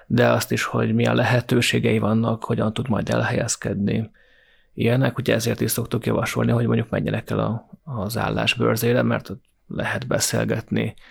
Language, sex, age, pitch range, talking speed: Hungarian, male, 30-49, 110-120 Hz, 145 wpm